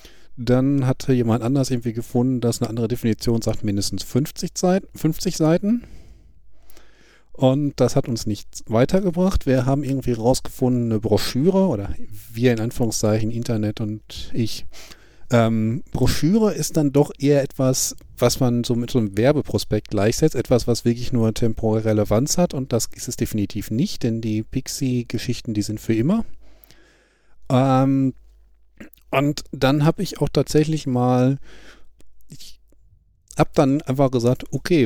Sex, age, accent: male, 40-59, German